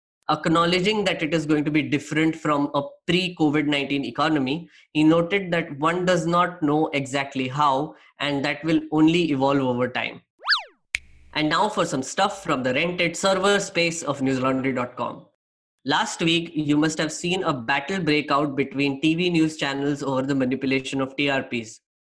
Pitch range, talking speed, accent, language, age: 140-180 Hz, 160 wpm, Indian, English, 20-39